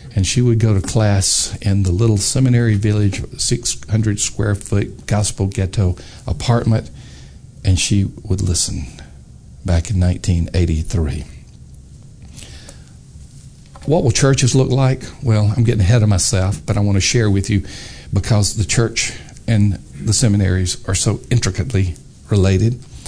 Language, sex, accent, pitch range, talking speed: English, male, American, 95-115 Hz, 130 wpm